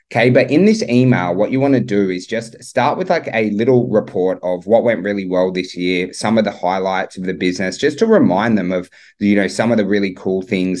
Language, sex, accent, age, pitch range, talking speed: English, male, Australian, 20-39, 95-120 Hz, 250 wpm